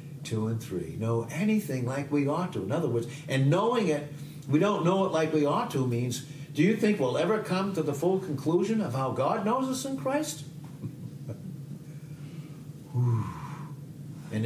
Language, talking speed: English, 175 wpm